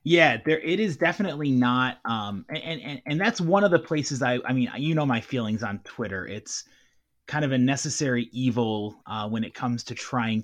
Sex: male